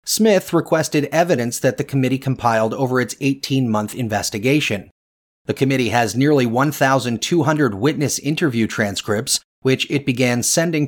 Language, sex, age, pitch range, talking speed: English, male, 30-49, 115-155 Hz, 125 wpm